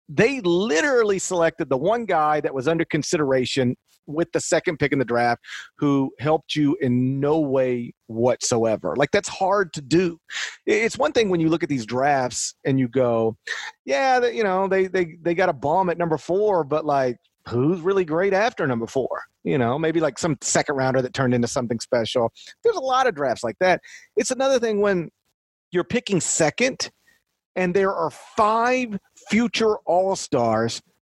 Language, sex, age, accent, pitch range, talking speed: English, male, 40-59, American, 135-205 Hz, 180 wpm